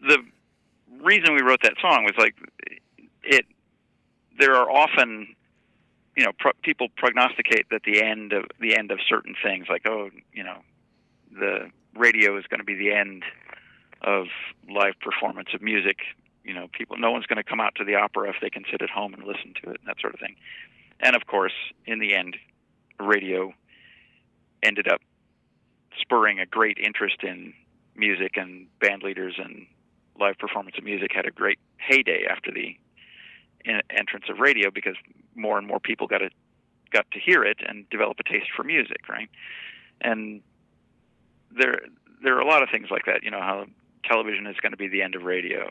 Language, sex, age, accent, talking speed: English, male, 50-69, American, 185 wpm